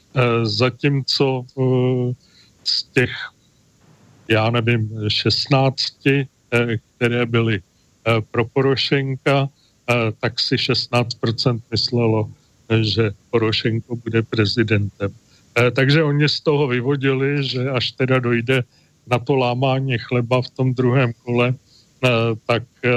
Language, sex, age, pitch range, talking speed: Czech, male, 40-59, 115-135 Hz, 95 wpm